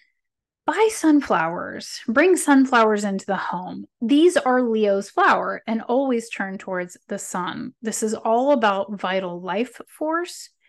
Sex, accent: female, American